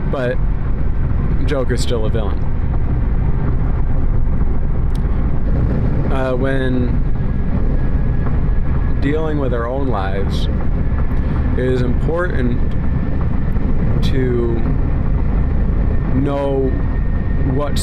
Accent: American